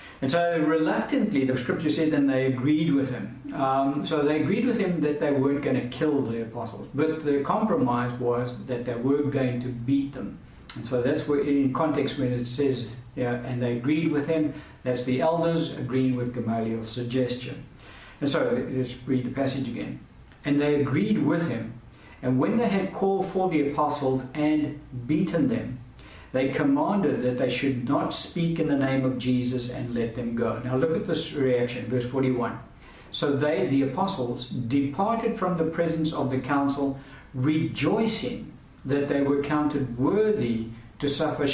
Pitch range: 125-155 Hz